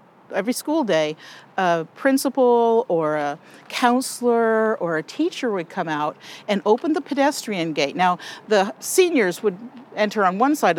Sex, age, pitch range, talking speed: female, 50-69, 175-250 Hz, 150 wpm